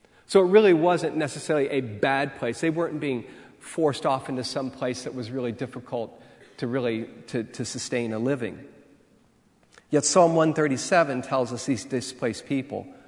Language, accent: English, American